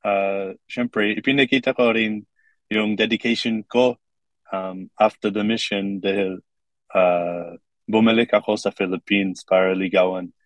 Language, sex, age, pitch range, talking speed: English, male, 20-39, 95-110 Hz, 115 wpm